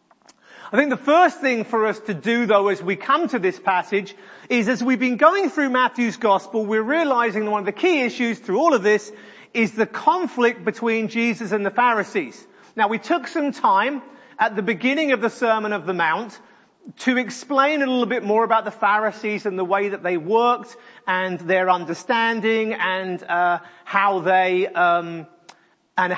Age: 40-59